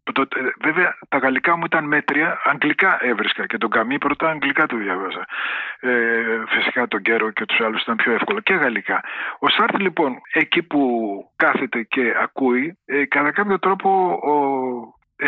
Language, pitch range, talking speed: Greek, 130-195 Hz, 165 wpm